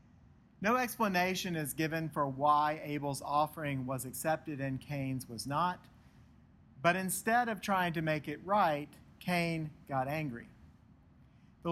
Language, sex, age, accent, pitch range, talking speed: English, male, 40-59, American, 140-175 Hz, 135 wpm